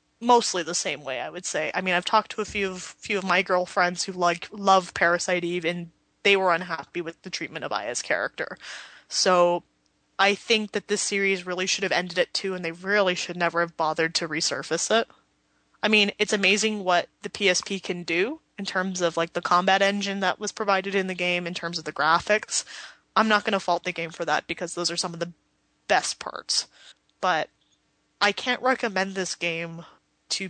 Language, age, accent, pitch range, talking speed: English, 20-39, American, 175-205 Hz, 210 wpm